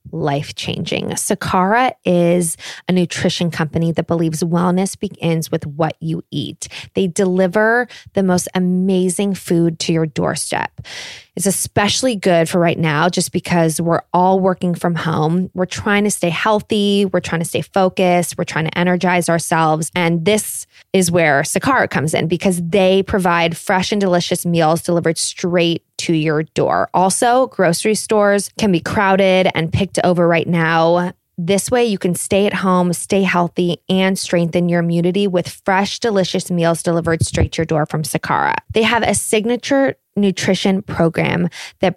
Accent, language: American, English